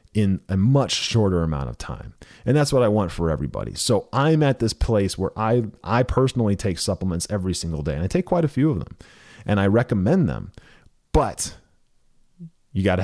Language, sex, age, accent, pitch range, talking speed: English, male, 30-49, American, 85-115 Hz, 200 wpm